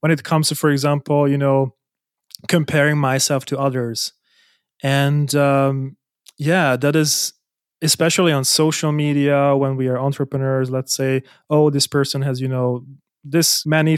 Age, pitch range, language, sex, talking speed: 30-49, 135-155 Hz, English, male, 150 wpm